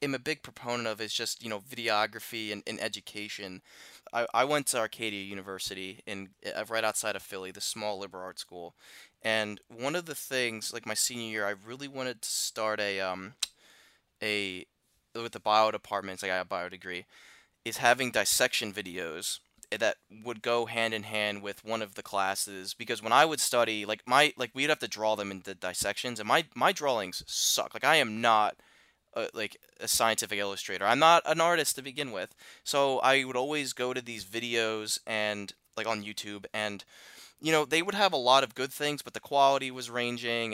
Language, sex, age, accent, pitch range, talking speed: English, male, 20-39, American, 105-125 Hz, 205 wpm